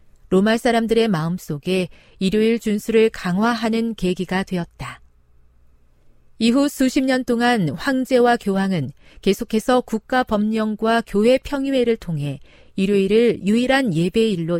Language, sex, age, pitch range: Korean, female, 40-59, 165-235 Hz